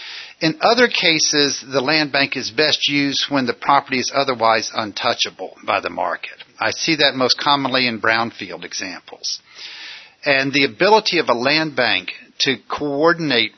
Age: 50-69